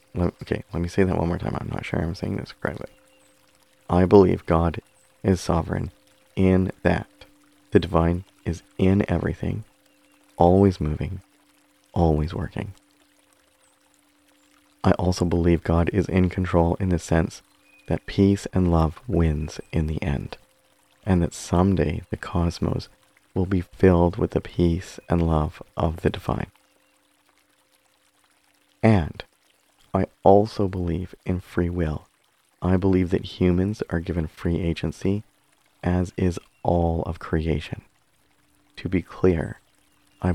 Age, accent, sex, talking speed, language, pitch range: 40-59, American, male, 130 wpm, English, 80-95 Hz